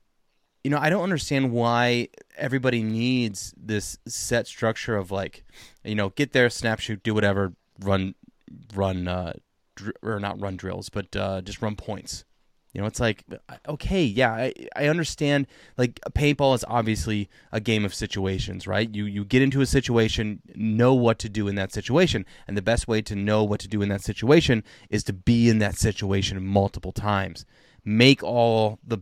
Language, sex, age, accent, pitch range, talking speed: English, male, 30-49, American, 100-125 Hz, 180 wpm